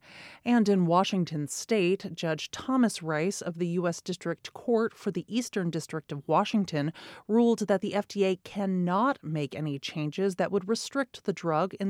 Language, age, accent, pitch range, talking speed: English, 30-49, American, 165-205 Hz, 160 wpm